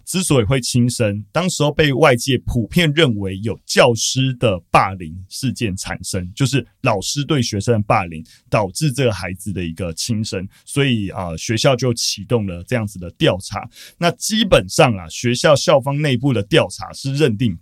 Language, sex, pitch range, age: Chinese, male, 110-150 Hz, 30-49